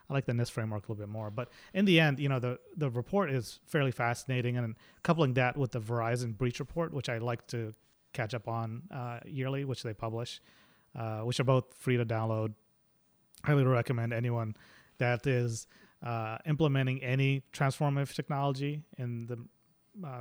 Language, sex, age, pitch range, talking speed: English, male, 30-49, 115-135 Hz, 185 wpm